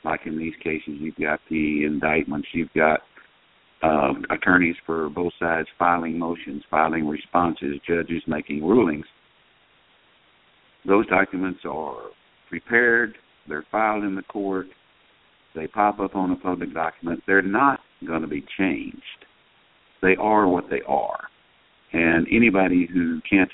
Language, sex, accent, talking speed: English, male, American, 135 wpm